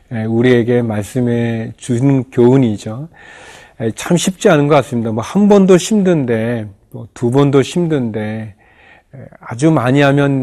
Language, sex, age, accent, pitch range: Korean, male, 40-59, native, 115-140 Hz